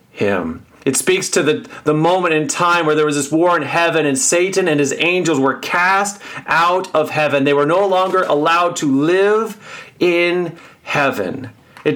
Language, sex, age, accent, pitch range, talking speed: English, male, 40-59, American, 140-185 Hz, 180 wpm